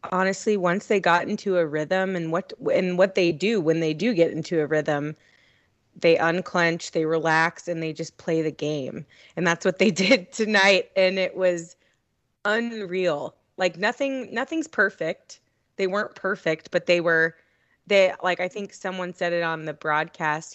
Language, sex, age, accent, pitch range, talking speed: English, female, 20-39, American, 155-190 Hz, 175 wpm